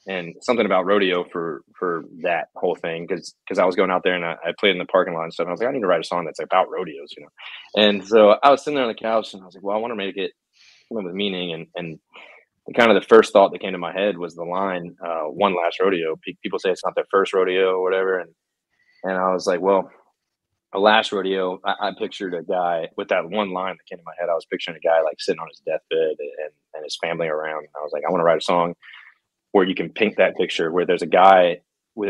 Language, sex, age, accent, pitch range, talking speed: English, male, 20-39, American, 85-100 Hz, 280 wpm